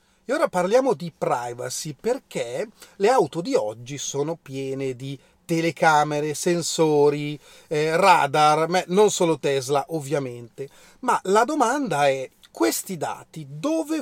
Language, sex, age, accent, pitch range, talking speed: Italian, male, 30-49, native, 150-220 Hz, 125 wpm